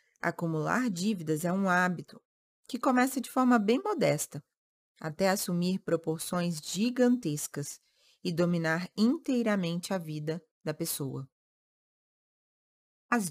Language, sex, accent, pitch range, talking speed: Portuguese, female, Brazilian, 165-225 Hz, 105 wpm